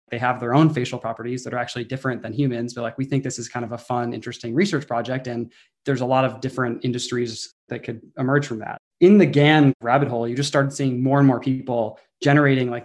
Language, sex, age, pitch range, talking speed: English, male, 20-39, 120-135 Hz, 245 wpm